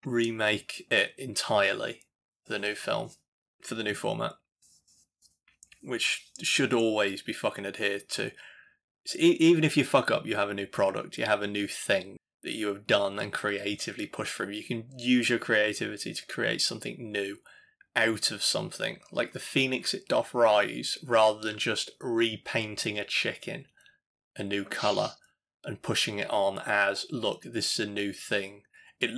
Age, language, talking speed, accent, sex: 20-39, English, 170 wpm, British, male